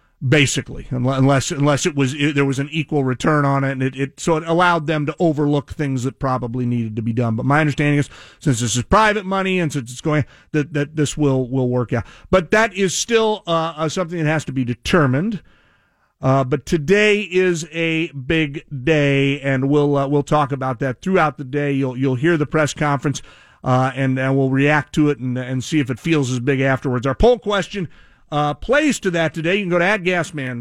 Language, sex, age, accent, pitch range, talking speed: English, male, 40-59, American, 135-180 Hz, 220 wpm